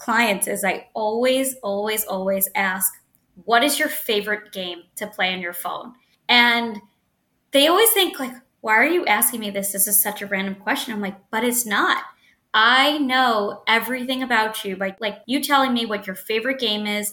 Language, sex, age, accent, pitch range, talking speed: English, female, 20-39, American, 205-265 Hz, 190 wpm